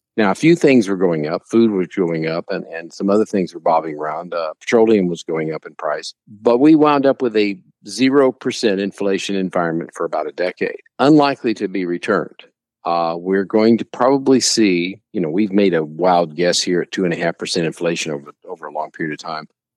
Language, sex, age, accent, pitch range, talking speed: English, male, 50-69, American, 90-120 Hz, 205 wpm